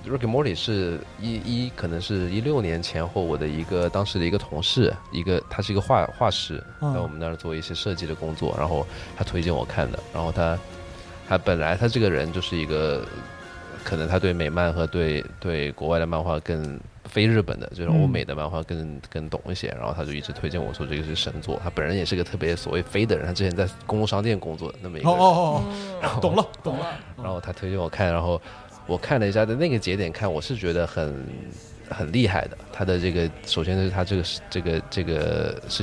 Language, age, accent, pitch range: Chinese, 20-39, native, 80-105 Hz